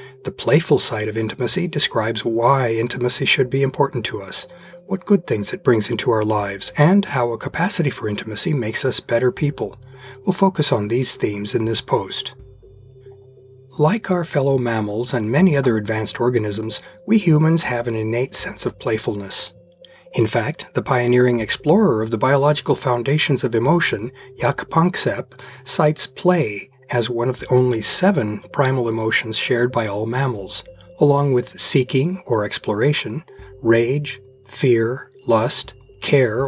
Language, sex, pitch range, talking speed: English, male, 115-150 Hz, 150 wpm